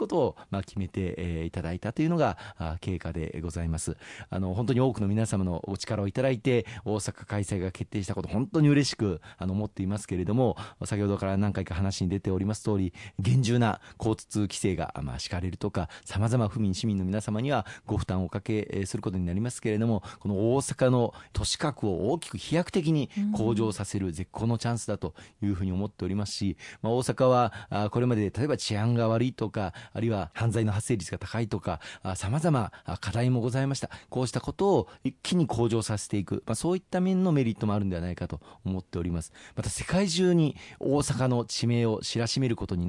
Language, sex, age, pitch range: Japanese, male, 40-59, 95-120 Hz